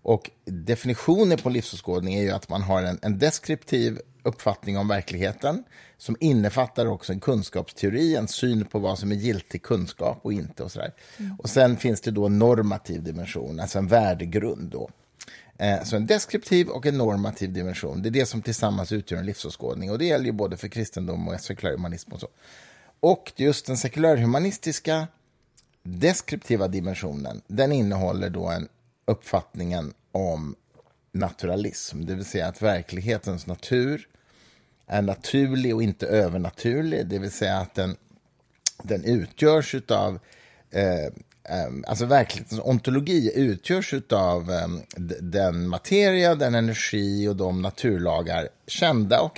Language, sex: Swedish, male